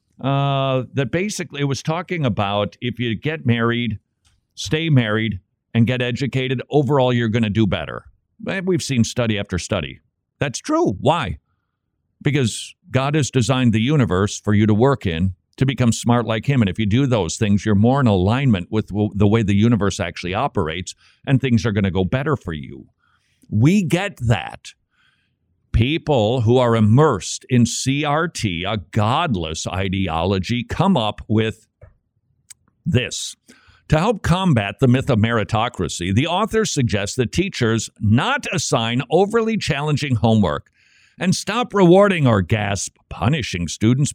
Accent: American